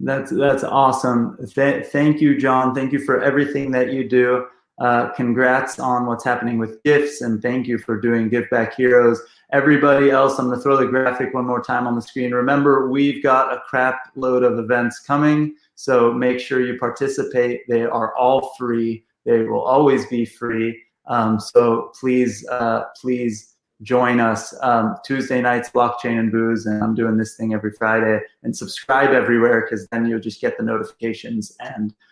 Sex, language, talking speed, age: male, English, 175 wpm, 20-39